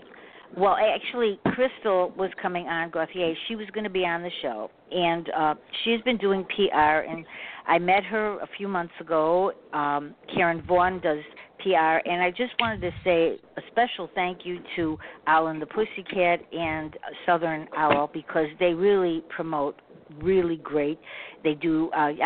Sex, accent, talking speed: female, American, 165 wpm